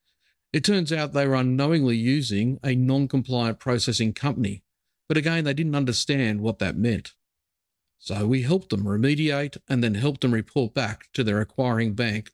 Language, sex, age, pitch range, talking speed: English, male, 50-69, 105-135 Hz, 165 wpm